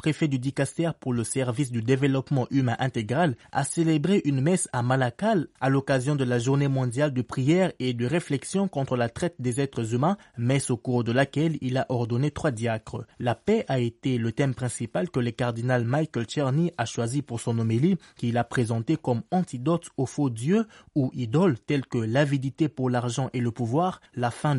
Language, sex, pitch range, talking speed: French, male, 120-155 Hz, 195 wpm